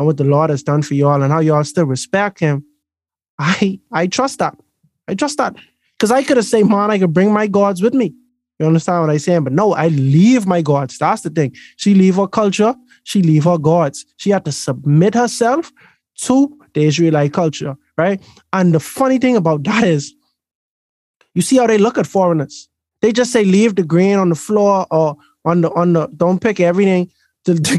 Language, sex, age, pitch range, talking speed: English, male, 20-39, 155-210 Hz, 215 wpm